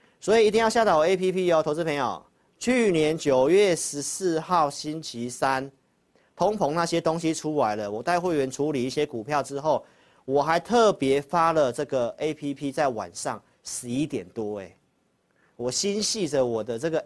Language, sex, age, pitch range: Chinese, male, 50-69, 135-175 Hz